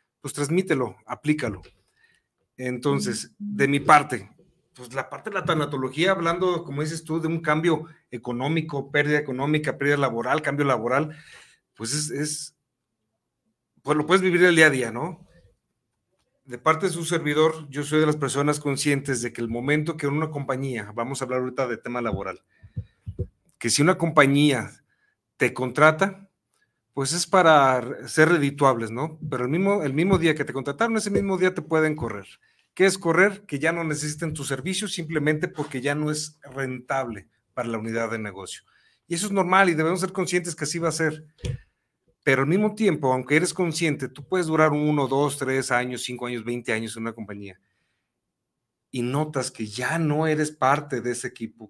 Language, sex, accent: Spanish, male, Mexican